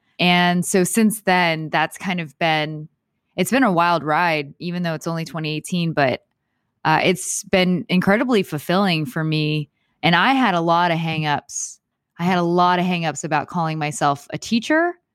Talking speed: 175 wpm